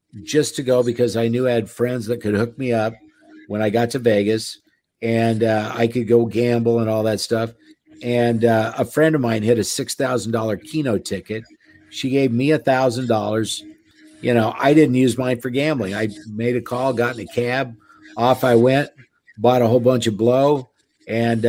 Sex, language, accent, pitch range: male, English, American, 110-125 Hz